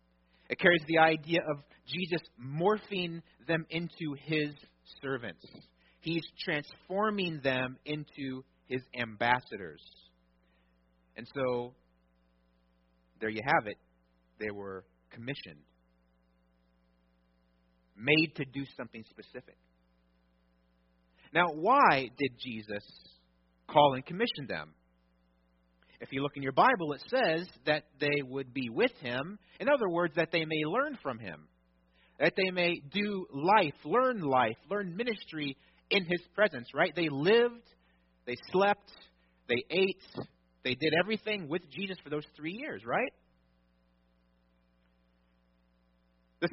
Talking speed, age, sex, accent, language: 120 wpm, 30-49, male, American, English